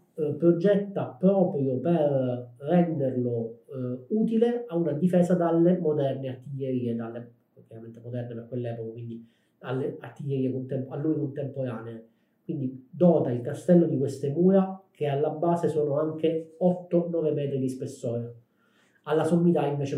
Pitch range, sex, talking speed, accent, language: 125-160 Hz, male, 130 wpm, native, Italian